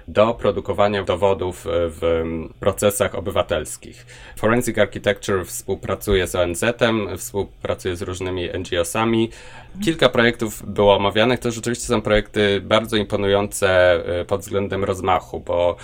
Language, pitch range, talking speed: Polish, 90-110 Hz, 110 wpm